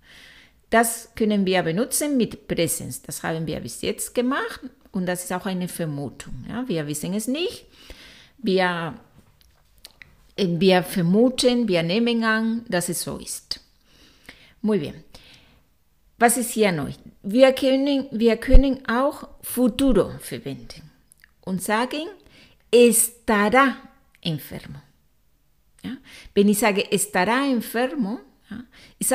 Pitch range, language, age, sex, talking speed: 180-245 Hz, Spanish, 50-69, female, 115 wpm